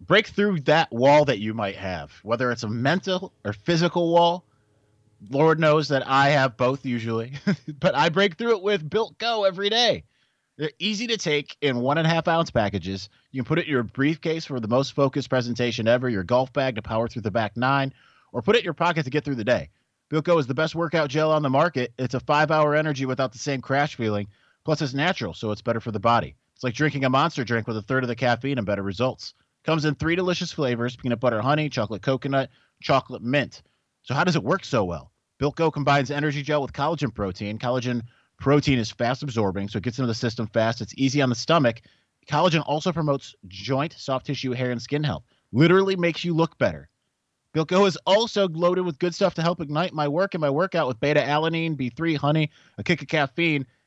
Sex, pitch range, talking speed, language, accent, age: male, 120-160 Hz, 220 wpm, English, American, 30-49